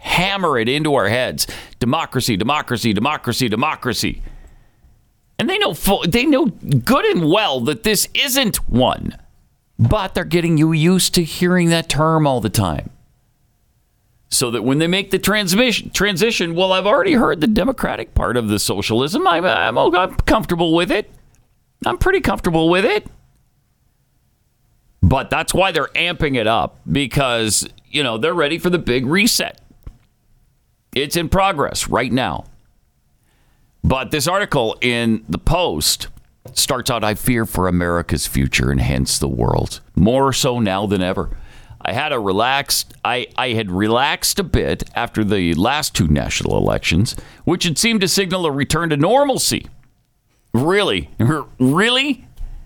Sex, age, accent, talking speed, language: male, 40-59, American, 150 wpm, English